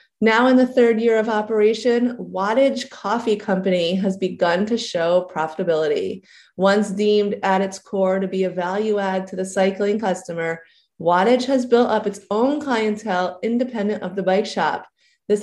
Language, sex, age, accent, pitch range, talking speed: English, female, 30-49, American, 185-230 Hz, 165 wpm